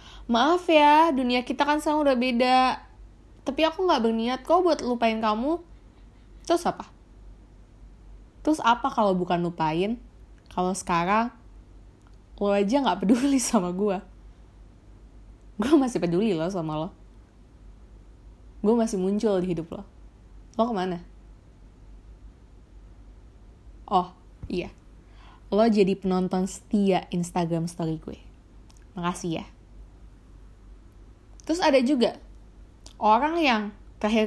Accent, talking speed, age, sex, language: native, 110 wpm, 20-39, female, Indonesian